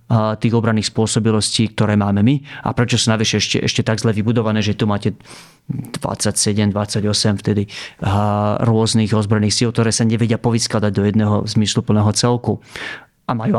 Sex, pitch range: male, 105-120 Hz